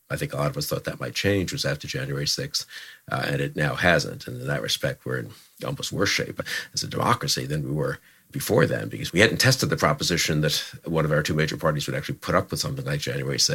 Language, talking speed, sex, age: English, 255 wpm, male, 50-69